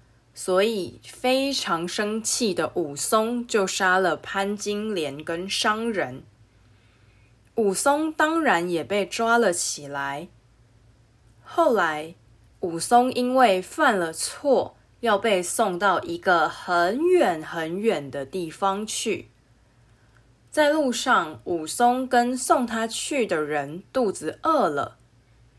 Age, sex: 20-39, female